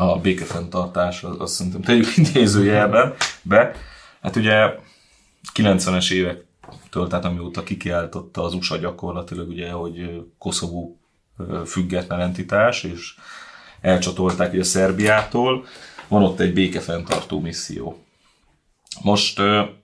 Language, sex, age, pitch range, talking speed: Hungarian, male, 30-49, 90-105 Hz, 95 wpm